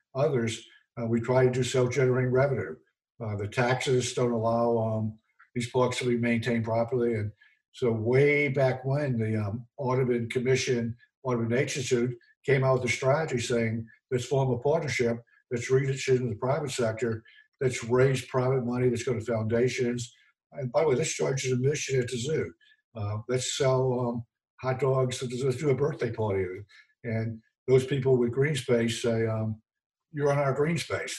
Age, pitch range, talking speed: 60-79, 115-135 Hz, 170 wpm